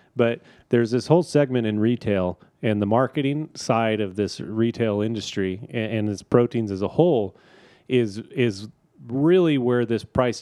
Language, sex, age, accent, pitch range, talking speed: English, male, 30-49, American, 105-125 Hz, 160 wpm